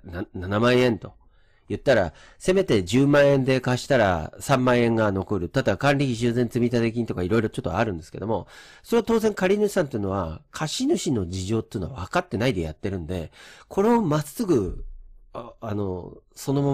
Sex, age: male, 40-59